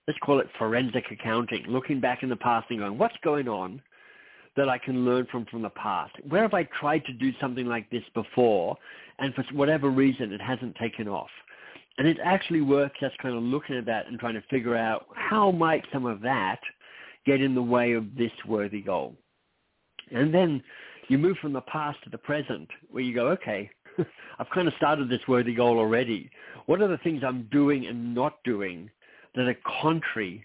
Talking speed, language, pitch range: 205 wpm, English, 115-140 Hz